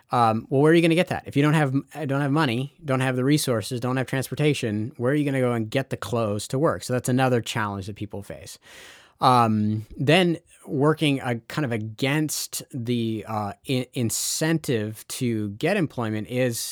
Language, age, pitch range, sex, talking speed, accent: English, 30-49, 110-135 Hz, male, 205 wpm, American